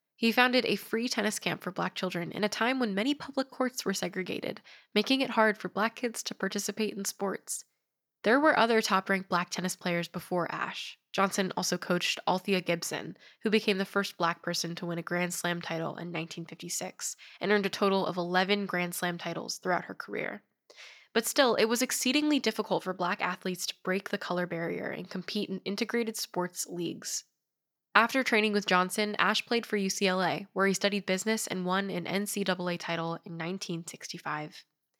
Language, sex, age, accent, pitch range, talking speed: English, female, 10-29, American, 175-215 Hz, 185 wpm